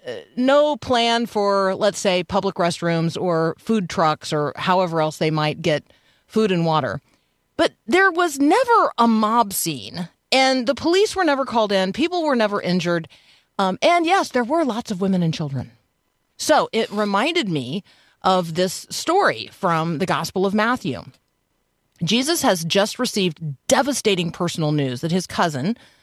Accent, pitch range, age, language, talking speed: American, 155-205 Hz, 40-59, English, 160 wpm